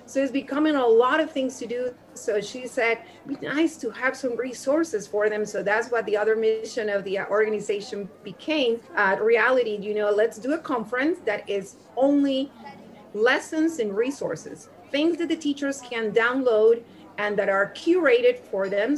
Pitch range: 200-270 Hz